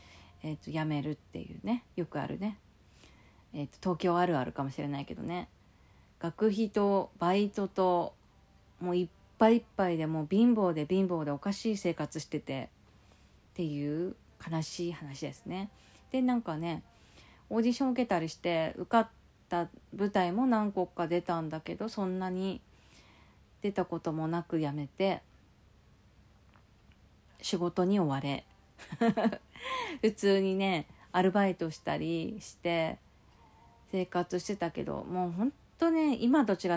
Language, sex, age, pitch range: Japanese, female, 40-59, 160-205 Hz